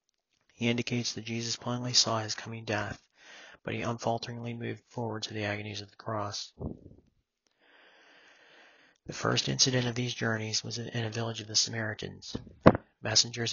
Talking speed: 150 wpm